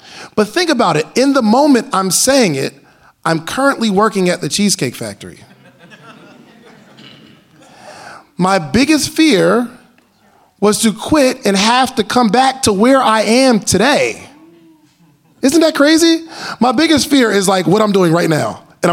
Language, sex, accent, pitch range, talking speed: English, male, American, 165-235 Hz, 150 wpm